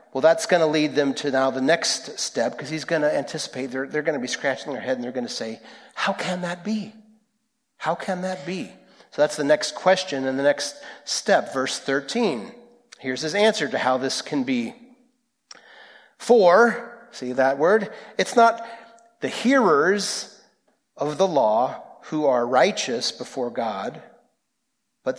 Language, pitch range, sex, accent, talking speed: English, 135-215 Hz, male, American, 175 wpm